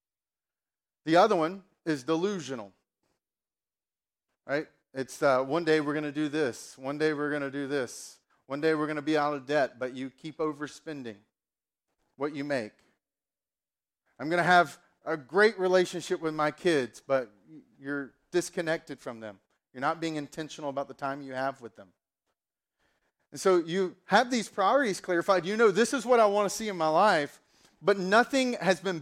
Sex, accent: male, American